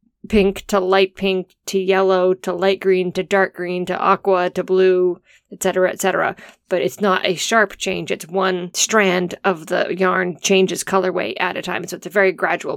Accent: American